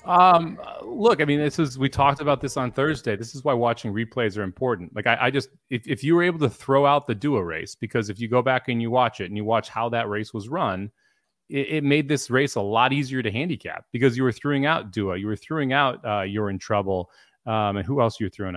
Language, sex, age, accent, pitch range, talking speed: English, male, 30-49, American, 105-130 Hz, 260 wpm